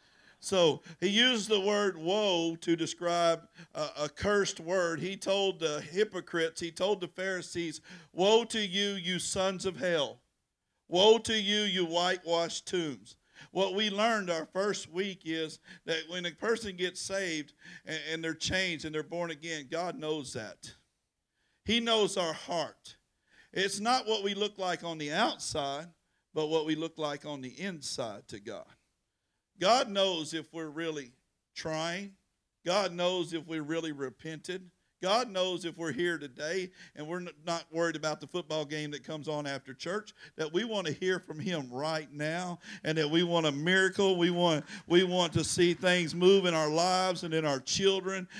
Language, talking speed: English, 175 wpm